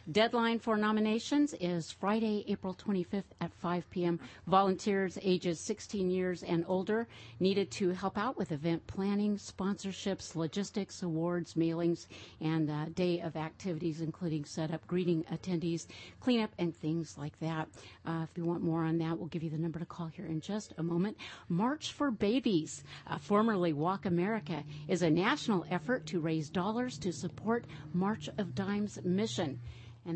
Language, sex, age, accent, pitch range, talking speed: English, female, 50-69, American, 165-200 Hz, 160 wpm